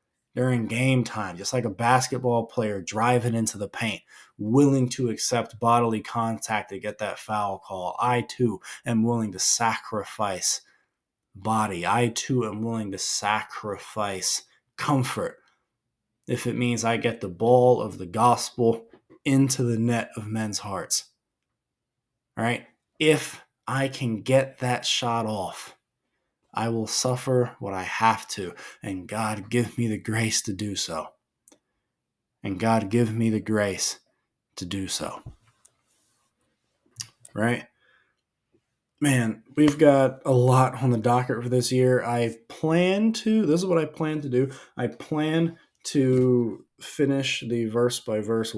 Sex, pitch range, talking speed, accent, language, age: male, 110-125 Hz, 140 wpm, American, English, 20-39